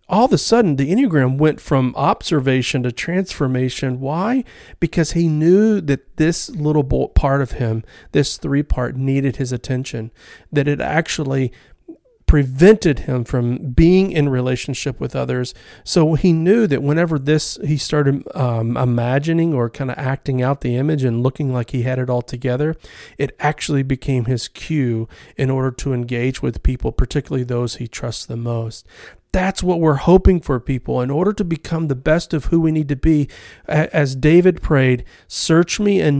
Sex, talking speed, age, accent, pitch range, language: male, 170 wpm, 40-59, American, 130-160 Hz, English